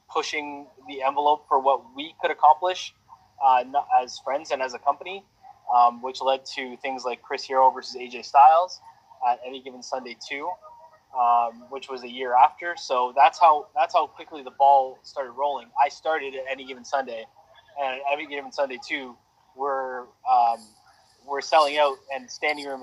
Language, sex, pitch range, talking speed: English, male, 130-155 Hz, 180 wpm